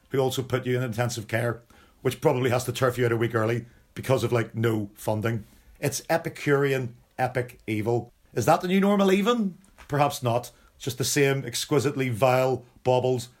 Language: English